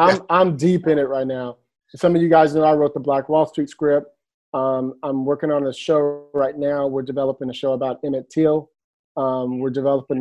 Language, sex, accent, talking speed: English, male, American, 215 wpm